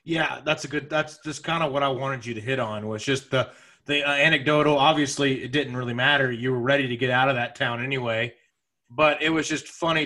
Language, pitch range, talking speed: English, 135-175 Hz, 250 wpm